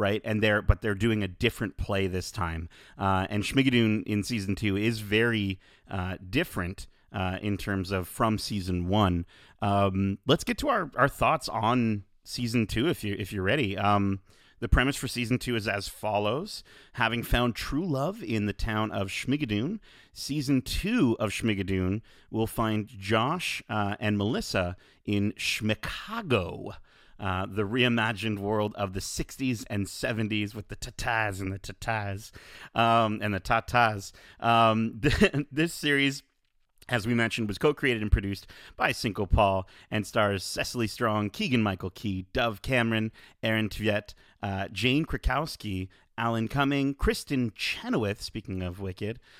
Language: English